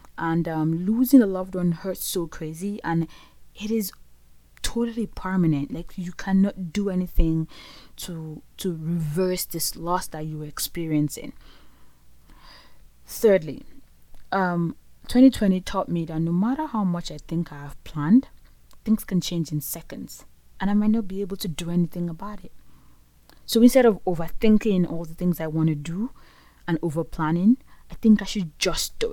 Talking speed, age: 160 wpm, 20-39